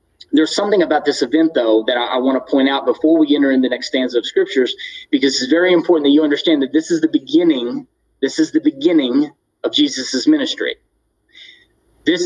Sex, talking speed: male, 205 wpm